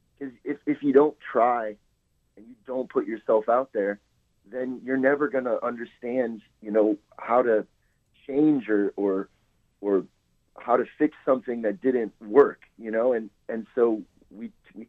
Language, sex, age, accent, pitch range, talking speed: English, male, 30-49, American, 105-140 Hz, 160 wpm